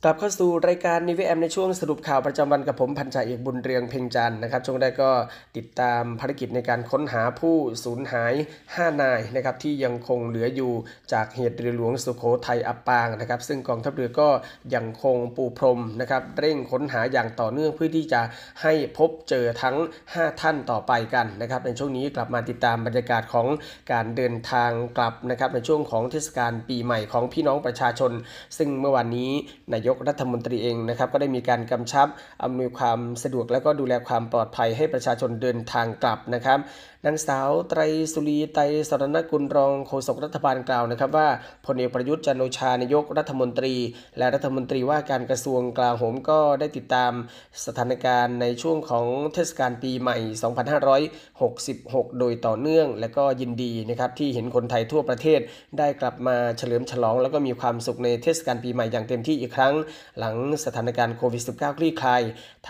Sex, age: male, 20-39